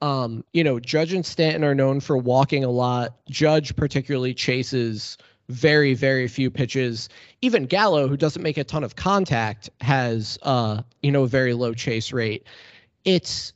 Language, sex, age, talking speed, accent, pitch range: English, male, 20-39, 170 wpm, American, 125-160 Hz